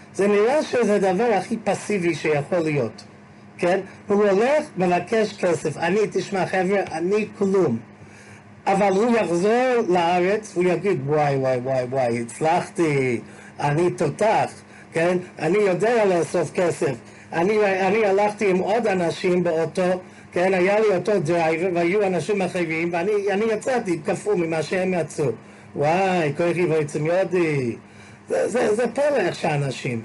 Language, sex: English, male